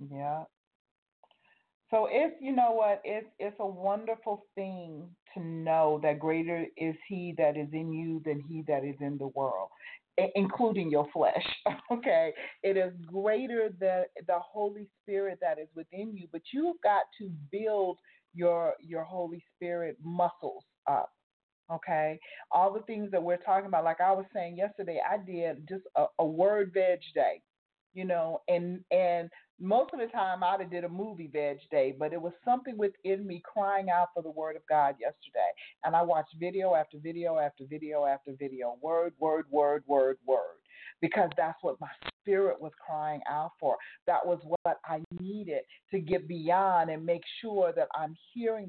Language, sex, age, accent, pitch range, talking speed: English, female, 40-59, American, 160-205 Hz, 175 wpm